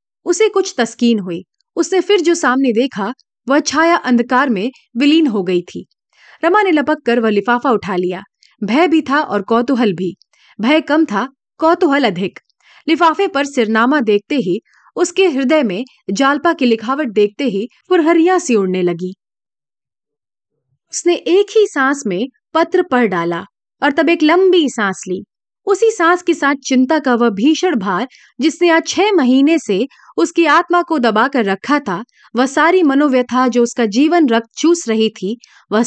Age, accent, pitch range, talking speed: 30-49, native, 220-330 Hz, 130 wpm